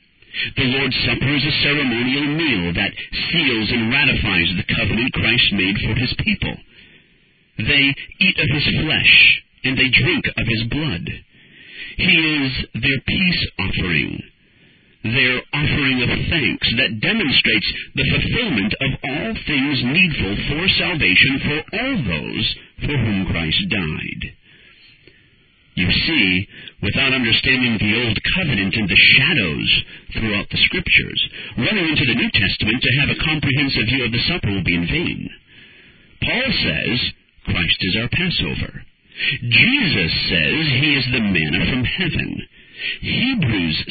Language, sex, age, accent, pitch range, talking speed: English, male, 50-69, American, 105-140 Hz, 135 wpm